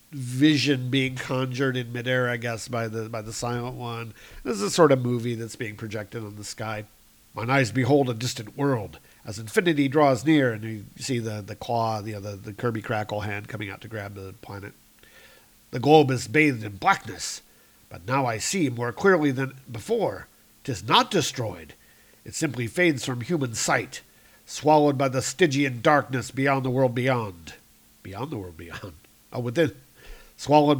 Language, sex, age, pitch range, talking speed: English, male, 50-69, 115-140 Hz, 180 wpm